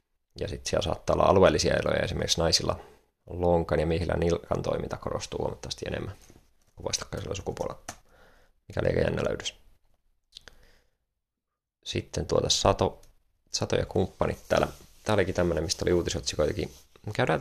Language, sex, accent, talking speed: Finnish, male, native, 125 wpm